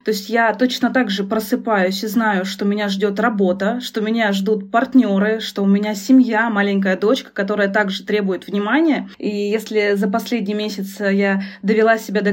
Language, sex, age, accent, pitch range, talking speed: Russian, female, 20-39, native, 205-250 Hz, 175 wpm